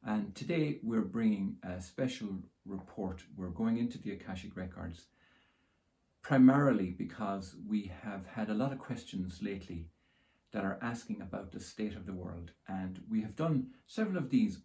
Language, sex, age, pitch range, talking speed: English, male, 50-69, 95-145 Hz, 160 wpm